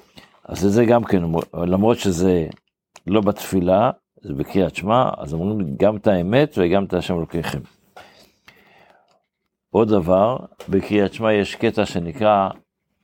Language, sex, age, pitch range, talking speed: Hebrew, male, 50-69, 85-105 Hz, 125 wpm